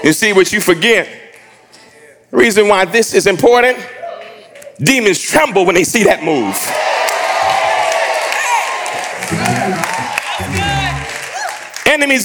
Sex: male